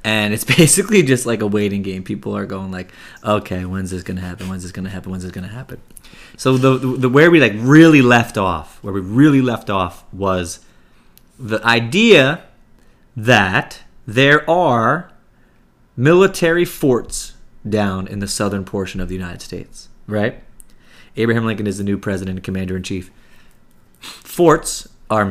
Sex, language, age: male, English, 30-49